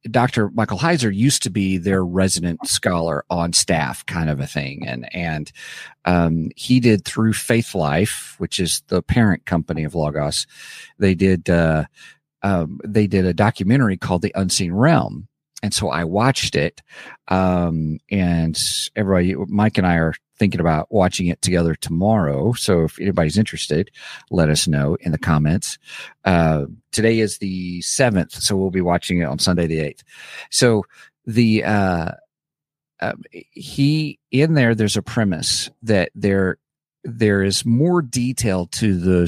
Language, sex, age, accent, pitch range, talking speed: English, male, 50-69, American, 85-110 Hz, 155 wpm